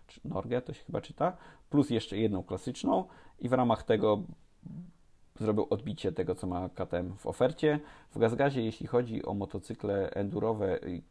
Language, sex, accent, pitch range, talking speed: Polish, male, native, 95-120 Hz, 155 wpm